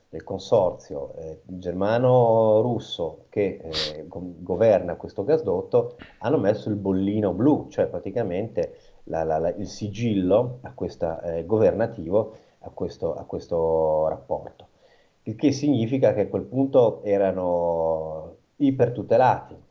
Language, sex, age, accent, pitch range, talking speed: Italian, male, 30-49, native, 90-125 Hz, 120 wpm